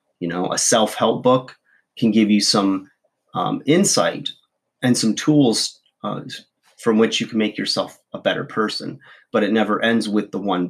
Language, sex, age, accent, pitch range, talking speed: English, male, 30-49, American, 105-140 Hz, 175 wpm